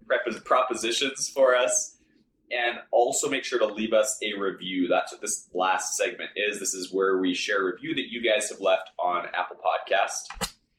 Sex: male